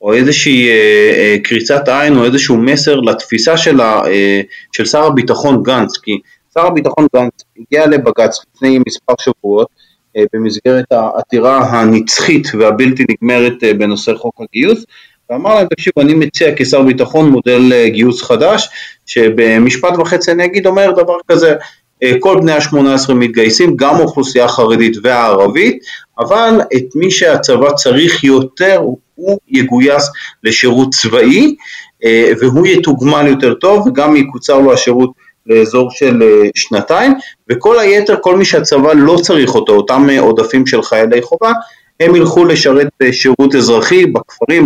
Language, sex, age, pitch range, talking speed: Hebrew, male, 30-49, 120-175 Hz, 135 wpm